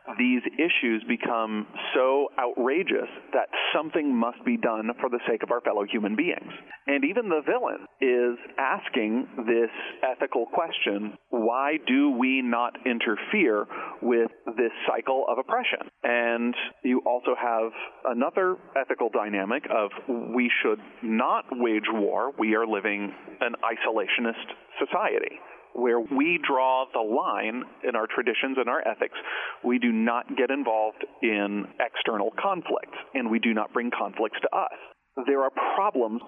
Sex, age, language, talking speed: male, 40-59, English, 140 wpm